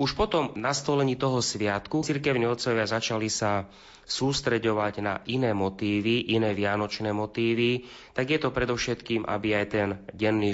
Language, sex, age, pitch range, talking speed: Slovak, male, 30-49, 100-120 Hz, 140 wpm